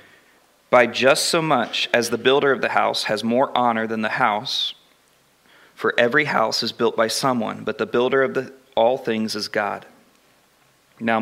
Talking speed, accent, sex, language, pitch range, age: 175 wpm, American, male, English, 110-135 Hz, 40-59